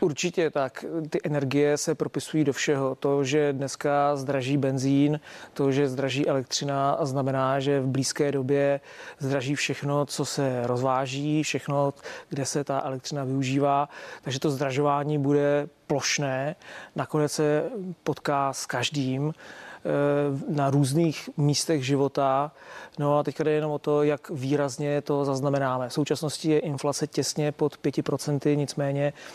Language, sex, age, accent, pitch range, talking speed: Czech, male, 30-49, native, 140-150 Hz, 135 wpm